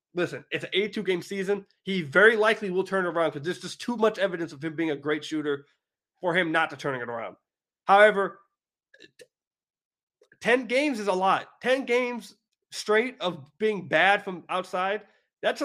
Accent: American